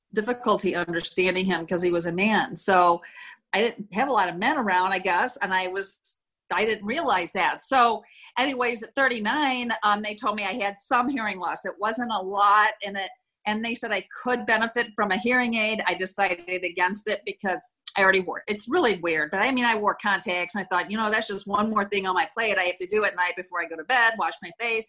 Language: English